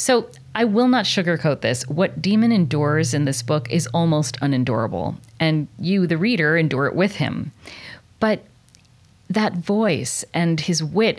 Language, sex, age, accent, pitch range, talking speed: English, female, 40-59, American, 140-180 Hz, 155 wpm